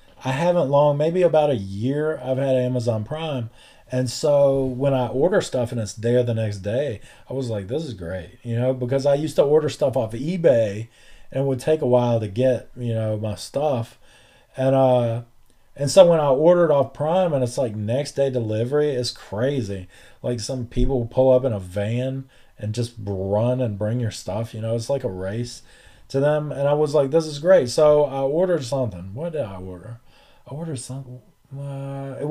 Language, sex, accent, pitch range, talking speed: English, male, American, 115-140 Hz, 205 wpm